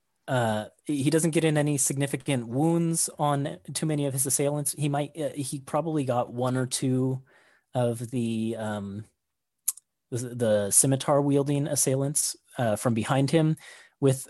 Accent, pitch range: American, 115-145 Hz